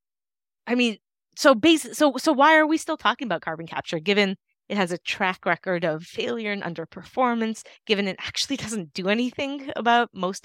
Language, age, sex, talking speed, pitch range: English, 20-39, female, 185 wpm, 175-230 Hz